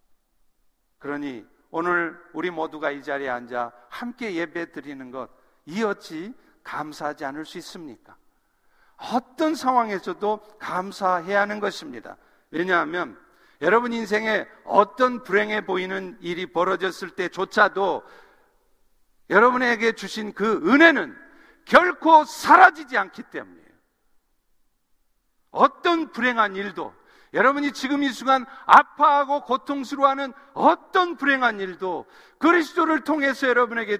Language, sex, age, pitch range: Korean, male, 50-69, 175-275 Hz